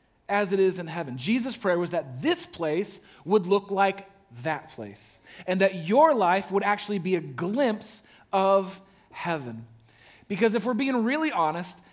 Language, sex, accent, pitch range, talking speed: English, male, American, 155-205 Hz, 165 wpm